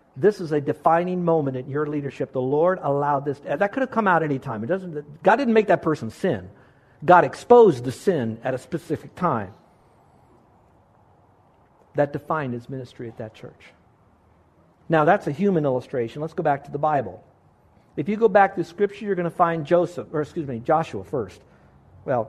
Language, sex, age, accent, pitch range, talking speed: English, male, 60-79, American, 135-185 Hz, 185 wpm